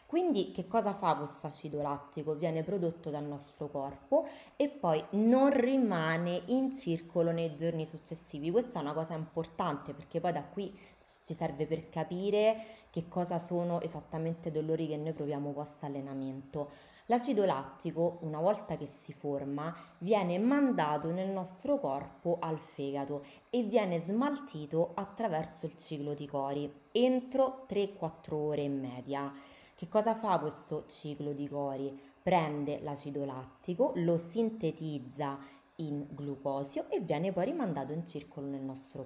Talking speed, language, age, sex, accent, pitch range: 145 wpm, Italian, 20-39, female, native, 145-195 Hz